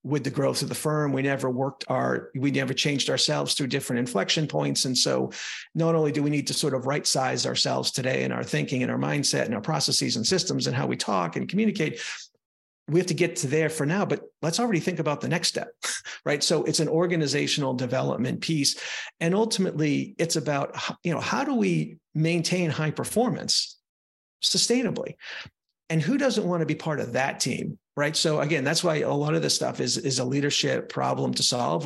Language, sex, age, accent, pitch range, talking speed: English, male, 40-59, American, 135-170 Hz, 210 wpm